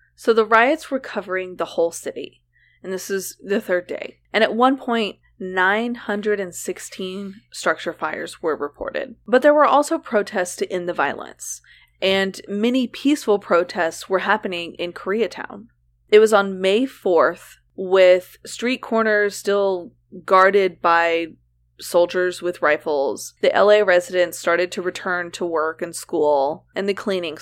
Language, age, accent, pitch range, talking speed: English, 20-39, American, 175-215 Hz, 145 wpm